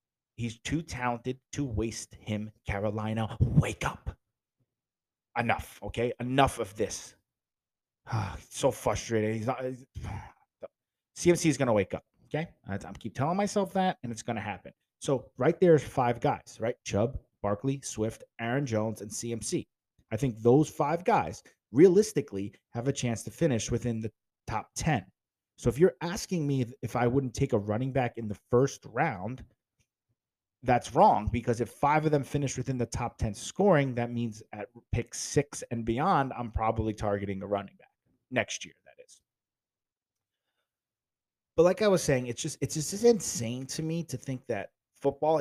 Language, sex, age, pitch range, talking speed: English, male, 30-49, 110-135 Hz, 170 wpm